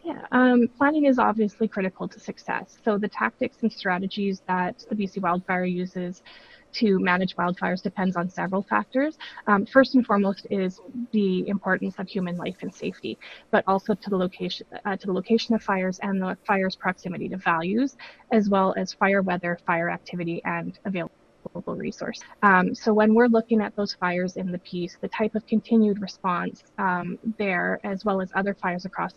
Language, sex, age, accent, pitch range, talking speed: English, female, 20-39, American, 185-220 Hz, 180 wpm